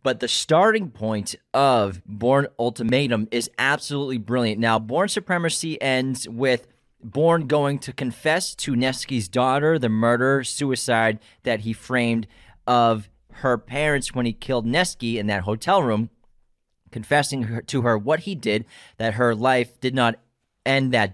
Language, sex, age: English, male, 30-49